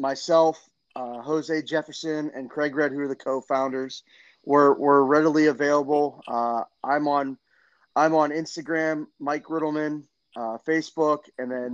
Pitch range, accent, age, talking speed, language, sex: 130-150 Hz, American, 20-39, 140 wpm, English, male